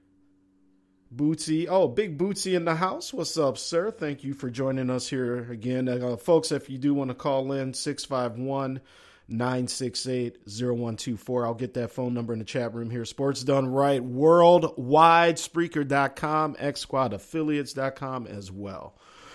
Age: 50-69